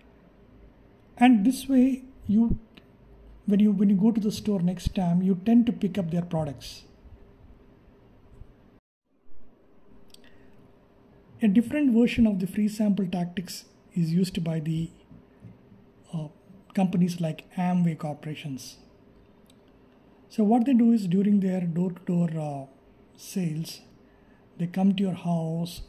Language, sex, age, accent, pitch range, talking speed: English, male, 50-69, Indian, 170-205 Hz, 125 wpm